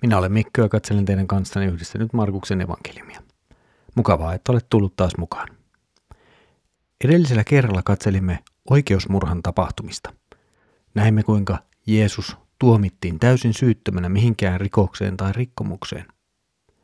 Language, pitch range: Finnish, 95-105 Hz